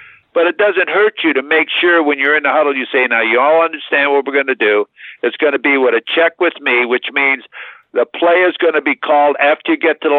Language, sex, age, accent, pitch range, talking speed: English, male, 60-79, American, 130-165 Hz, 275 wpm